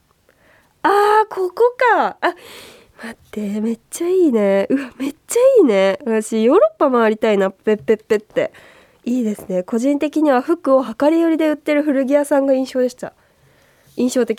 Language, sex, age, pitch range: Japanese, female, 20-39, 225-330 Hz